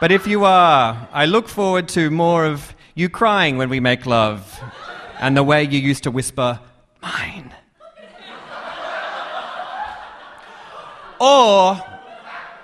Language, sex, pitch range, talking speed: English, male, 130-185 Hz, 120 wpm